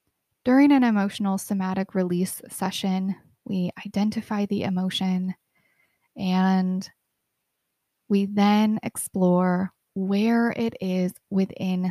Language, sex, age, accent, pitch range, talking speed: English, female, 20-39, American, 185-215 Hz, 90 wpm